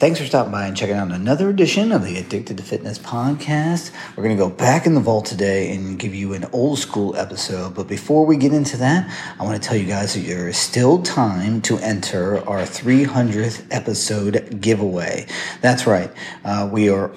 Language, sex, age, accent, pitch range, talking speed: English, male, 40-59, American, 100-125 Hz, 205 wpm